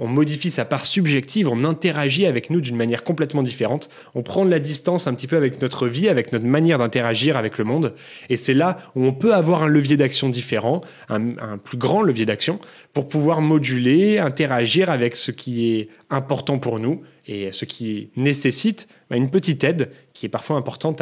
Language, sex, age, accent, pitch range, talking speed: French, male, 20-39, French, 120-155 Hz, 200 wpm